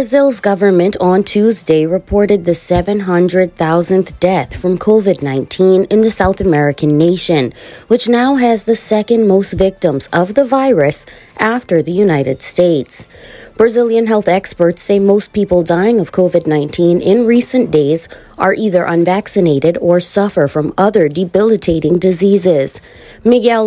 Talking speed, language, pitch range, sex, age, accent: 130 wpm, English, 170-220 Hz, female, 30-49, American